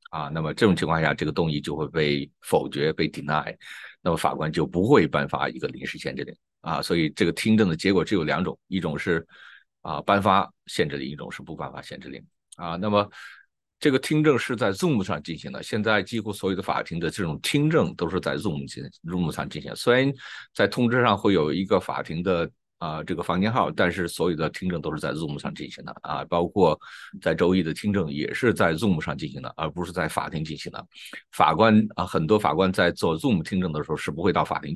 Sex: male